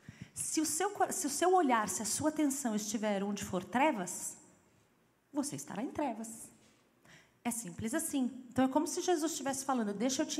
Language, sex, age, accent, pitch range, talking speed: Portuguese, female, 30-49, Brazilian, 210-260 Hz, 185 wpm